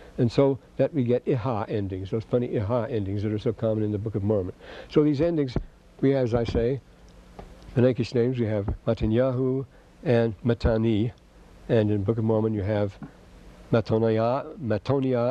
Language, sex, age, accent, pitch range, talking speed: English, male, 60-79, American, 115-145 Hz, 180 wpm